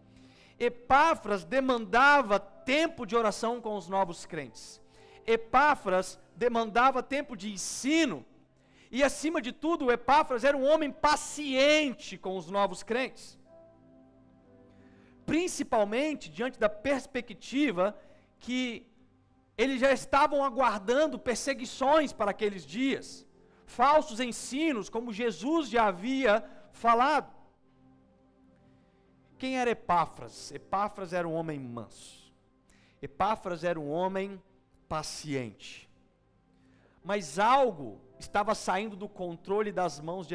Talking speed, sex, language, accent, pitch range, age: 105 wpm, male, Portuguese, Brazilian, 195-265 Hz, 50-69